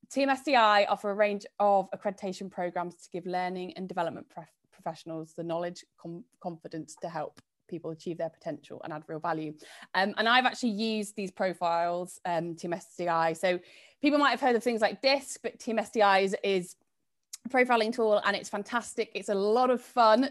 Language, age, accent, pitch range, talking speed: English, 20-39, British, 185-255 Hz, 190 wpm